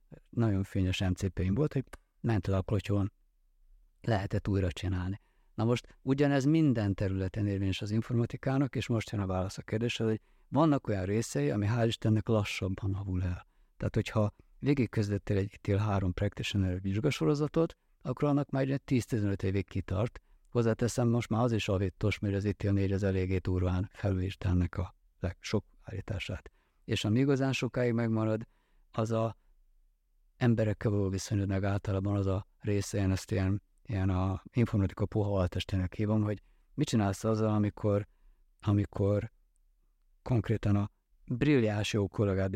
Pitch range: 95-115 Hz